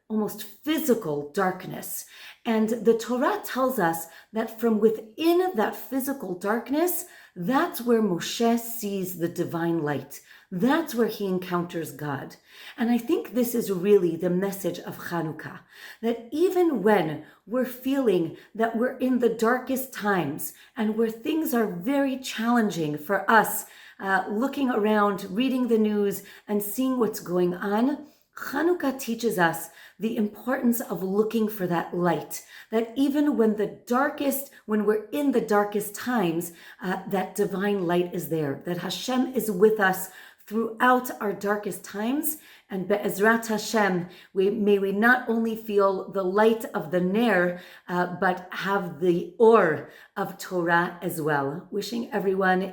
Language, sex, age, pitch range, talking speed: English, female, 40-59, 180-235 Hz, 145 wpm